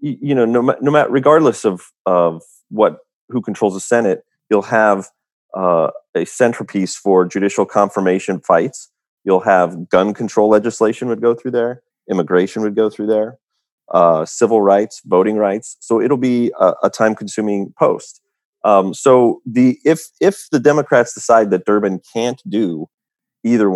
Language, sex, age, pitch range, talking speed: English, male, 30-49, 95-115 Hz, 155 wpm